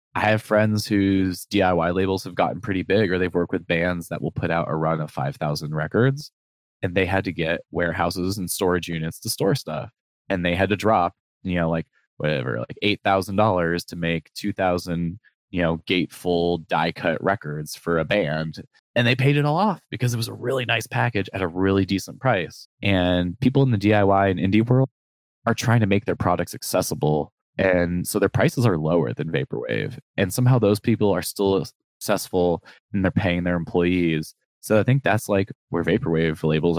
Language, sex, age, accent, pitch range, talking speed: English, male, 20-39, American, 85-110 Hz, 200 wpm